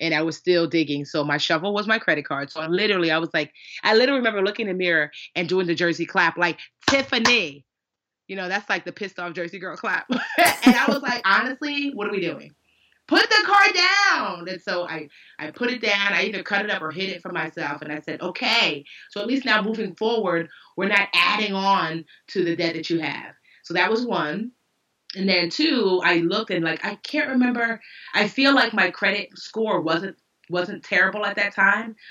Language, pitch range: English, 160-200 Hz